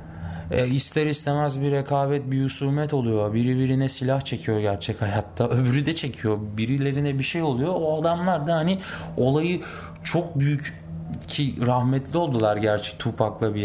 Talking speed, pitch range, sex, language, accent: 145 wpm, 105-155 Hz, male, Turkish, native